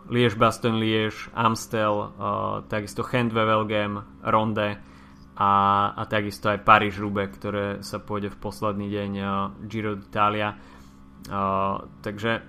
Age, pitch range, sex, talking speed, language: 20-39, 100-110 Hz, male, 115 wpm, Slovak